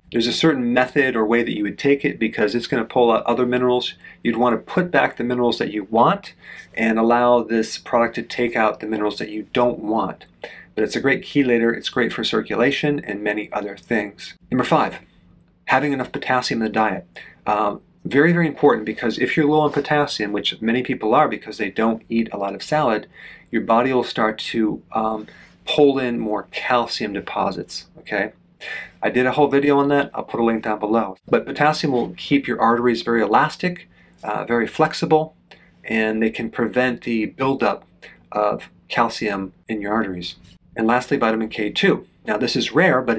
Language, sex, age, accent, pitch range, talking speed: English, male, 40-59, American, 110-135 Hz, 195 wpm